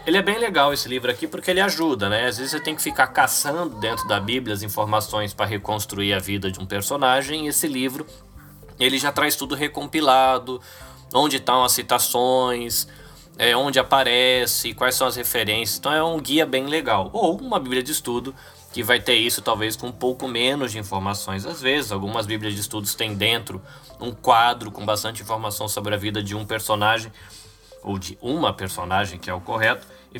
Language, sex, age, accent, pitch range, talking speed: Portuguese, male, 20-39, Brazilian, 105-135 Hz, 195 wpm